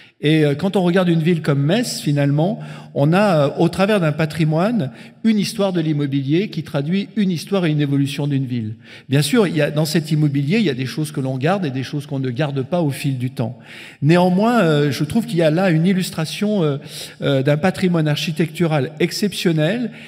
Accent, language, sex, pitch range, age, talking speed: French, French, male, 150-195 Hz, 50-69, 205 wpm